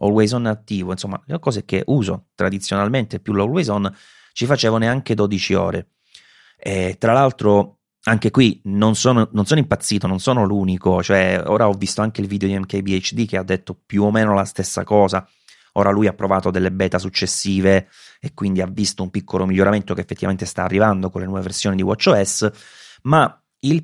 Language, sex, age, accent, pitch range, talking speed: Italian, male, 30-49, native, 95-120 Hz, 185 wpm